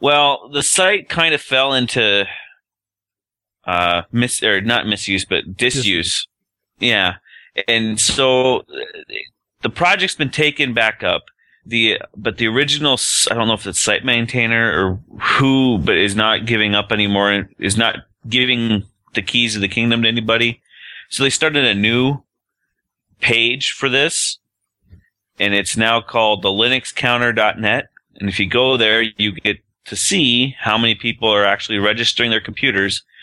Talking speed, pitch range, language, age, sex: 150 wpm, 105-125 Hz, English, 30-49, male